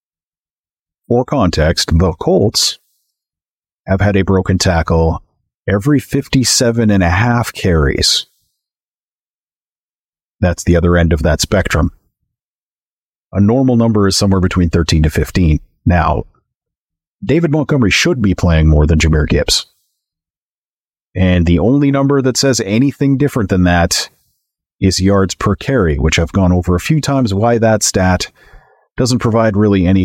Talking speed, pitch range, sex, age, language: 130 wpm, 85-110 Hz, male, 40-59, English